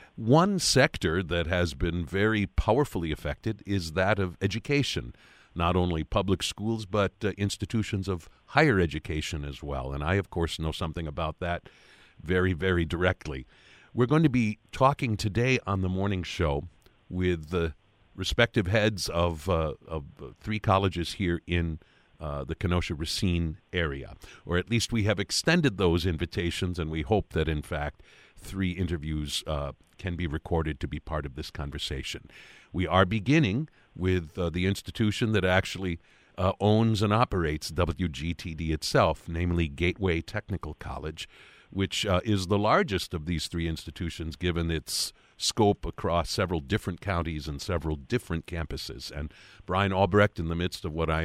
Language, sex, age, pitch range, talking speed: English, male, 50-69, 80-100 Hz, 155 wpm